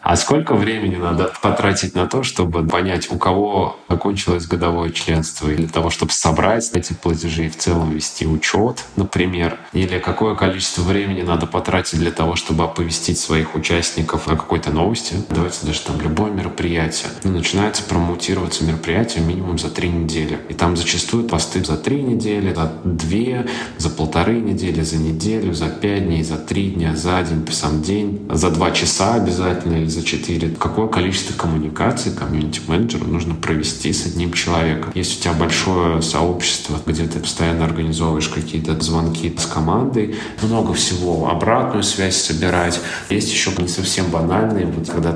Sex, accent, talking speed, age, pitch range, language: male, native, 160 wpm, 20-39, 80-95 Hz, Russian